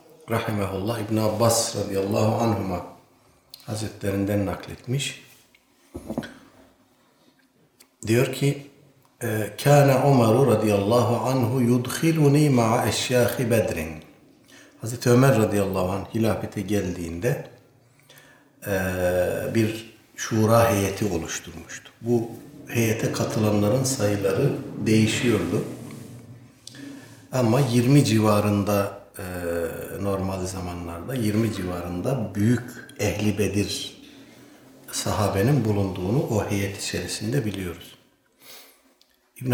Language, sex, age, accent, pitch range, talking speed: Turkish, male, 60-79, native, 100-130 Hz, 75 wpm